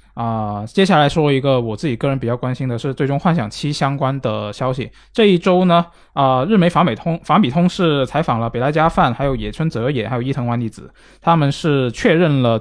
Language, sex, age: Chinese, male, 20-39